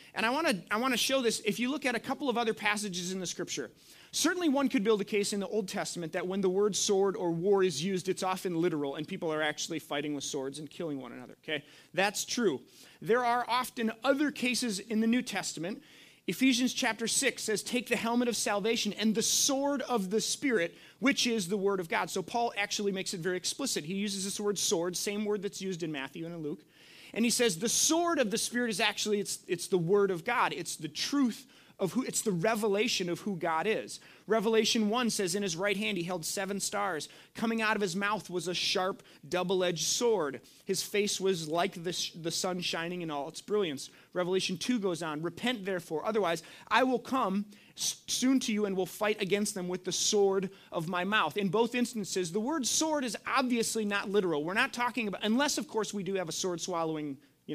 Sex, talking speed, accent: male, 225 wpm, American